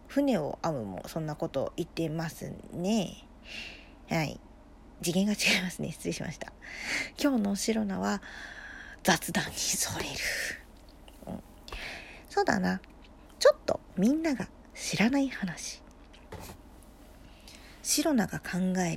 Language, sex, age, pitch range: Japanese, female, 40-59, 165-240 Hz